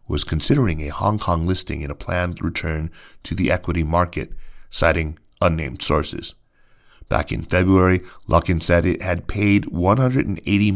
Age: 40-59